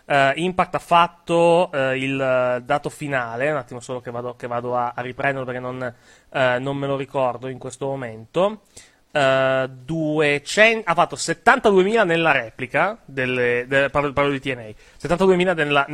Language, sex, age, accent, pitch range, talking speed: Italian, male, 30-49, native, 130-180 Hz, 130 wpm